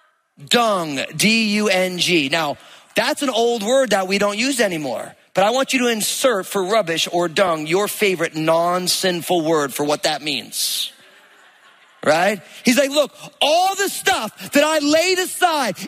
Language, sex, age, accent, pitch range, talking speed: English, male, 30-49, American, 210-315 Hz, 155 wpm